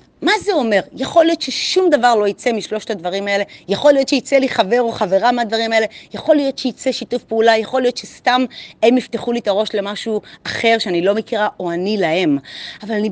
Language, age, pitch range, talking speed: Hebrew, 30-49, 205-280 Hz, 195 wpm